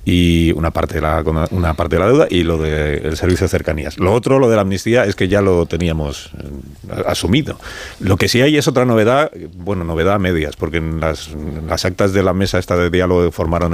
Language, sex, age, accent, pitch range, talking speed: Spanish, male, 40-59, Spanish, 85-110 Hz, 235 wpm